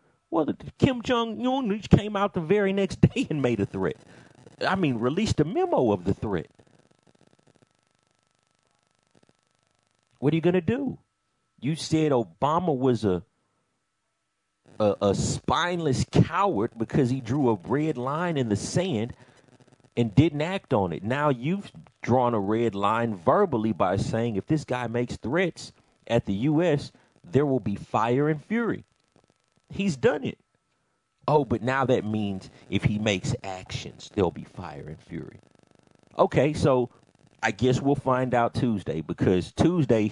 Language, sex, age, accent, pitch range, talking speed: English, male, 40-59, American, 110-145 Hz, 150 wpm